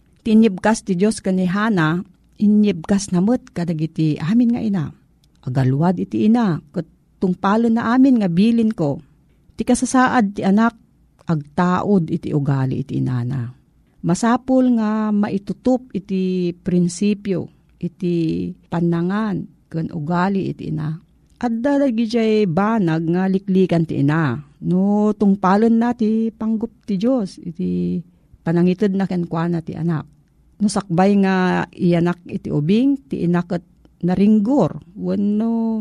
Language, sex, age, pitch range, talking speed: Filipino, female, 50-69, 165-220 Hz, 120 wpm